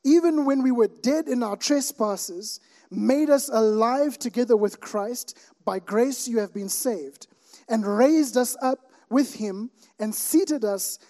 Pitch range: 205-255 Hz